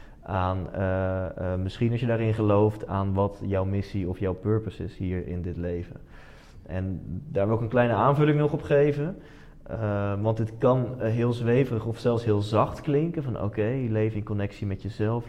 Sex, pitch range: male, 100-120 Hz